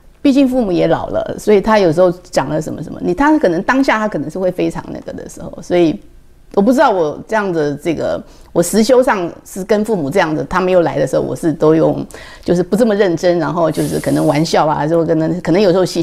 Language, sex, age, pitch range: Chinese, female, 50-69, 160-240 Hz